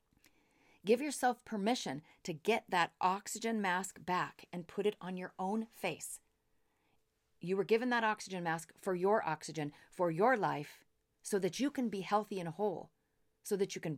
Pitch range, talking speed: 195-250 Hz, 170 wpm